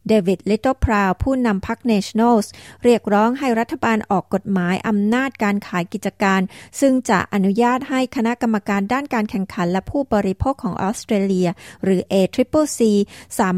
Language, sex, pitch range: Thai, female, 195-240 Hz